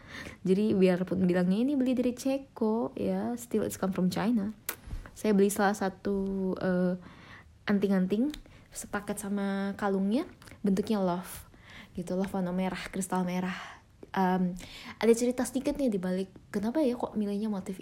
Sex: female